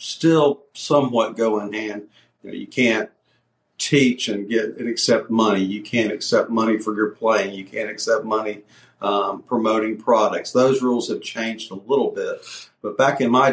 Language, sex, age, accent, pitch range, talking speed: English, male, 50-69, American, 105-125 Hz, 180 wpm